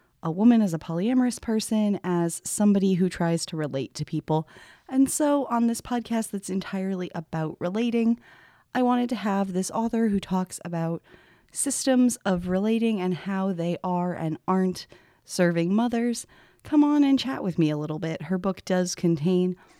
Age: 30-49